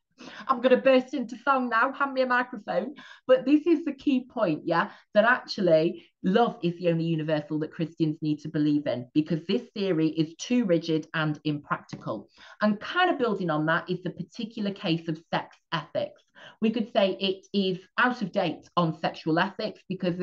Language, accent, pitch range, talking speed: English, British, 165-215 Hz, 190 wpm